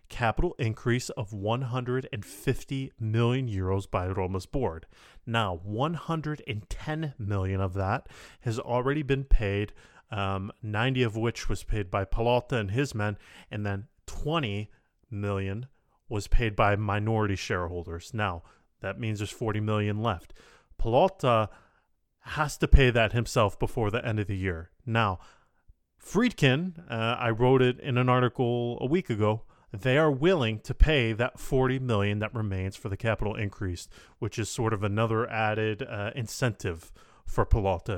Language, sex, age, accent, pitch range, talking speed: English, male, 30-49, American, 100-125 Hz, 145 wpm